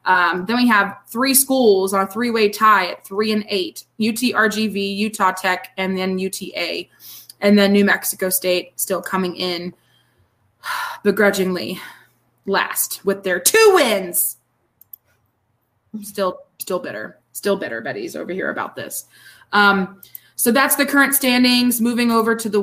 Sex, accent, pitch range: female, American, 185-215 Hz